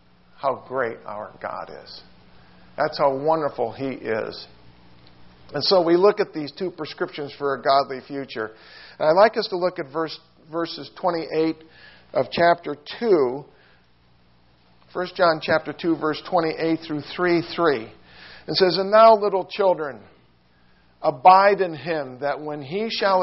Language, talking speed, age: English, 145 wpm, 50-69